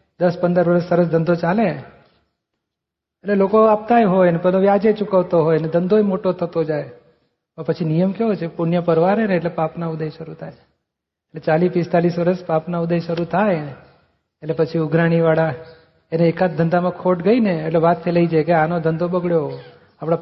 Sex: male